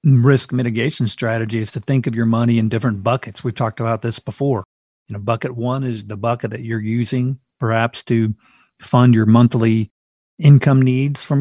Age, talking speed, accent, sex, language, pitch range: 40-59, 185 wpm, American, male, English, 115-135 Hz